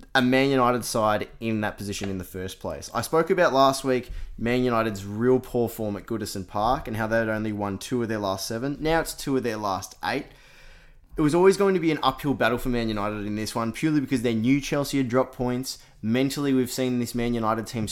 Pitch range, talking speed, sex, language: 105-130 Hz, 240 wpm, male, English